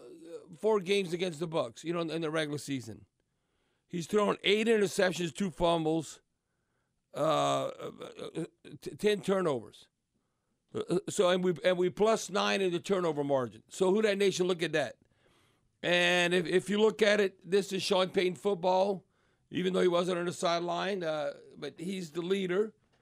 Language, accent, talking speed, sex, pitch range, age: English, American, 165 wpm, male, 150-185 Hz, 50-69